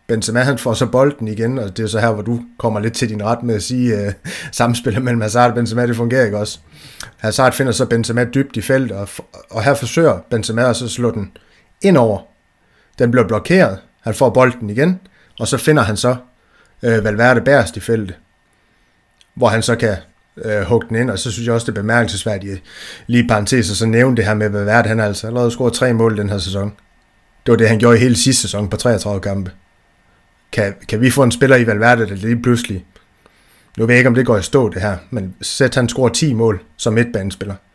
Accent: native